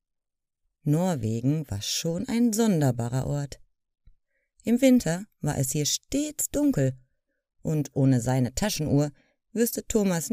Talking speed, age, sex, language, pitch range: 110 wpm, 30-49, female, German, 135-210 Hz